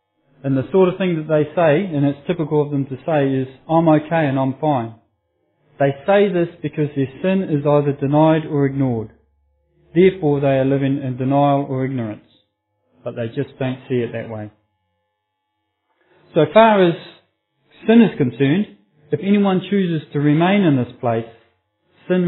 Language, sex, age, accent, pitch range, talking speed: English, male, 40-59, Australian, 125-165 Hz, 170 wpm